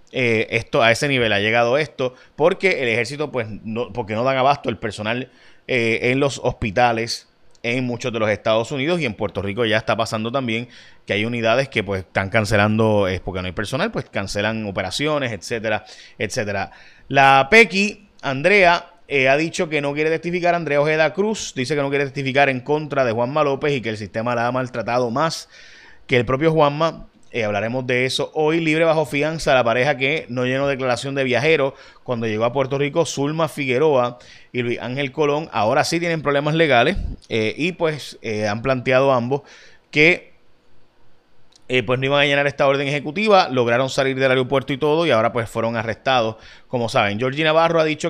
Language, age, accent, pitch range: Spanish, 30-49, Venezuelan, 115-145 Hz